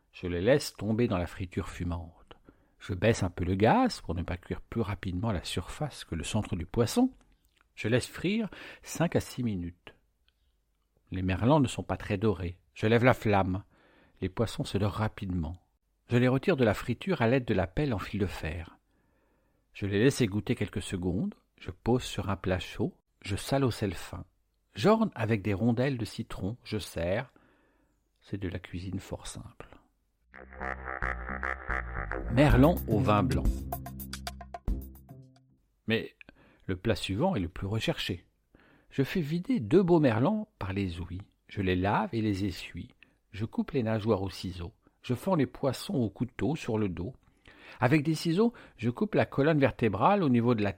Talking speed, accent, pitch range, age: 175 wpm, French, 90-120 Hz, 60-79